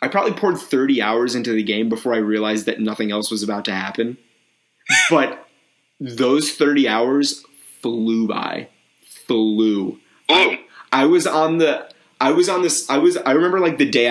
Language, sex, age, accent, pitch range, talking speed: English, male, 30-49, American, 110-135 Hz, 180 wpm